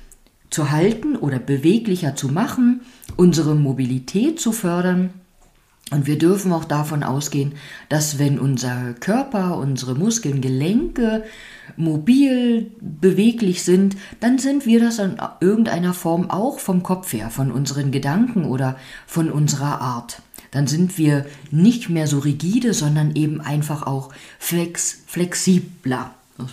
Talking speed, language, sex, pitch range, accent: 130 wpm, German, female, 145-225 Hz, German